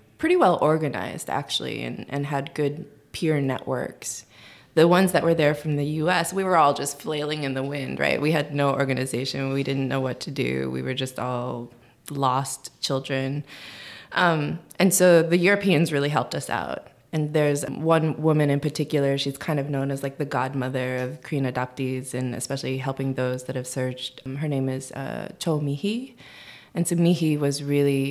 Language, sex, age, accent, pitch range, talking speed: English, female, 20-39, American, 130-150 Hz, 190 wpm